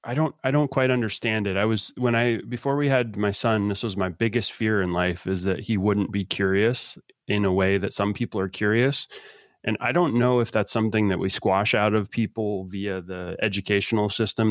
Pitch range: 95-120 Hz